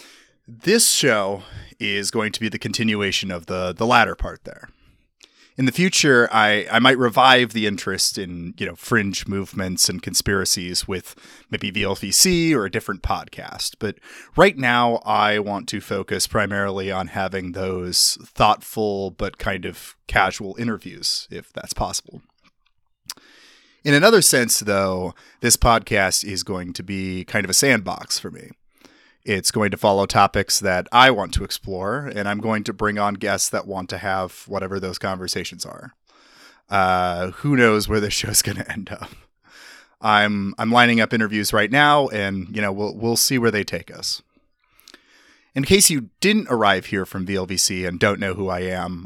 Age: 30-49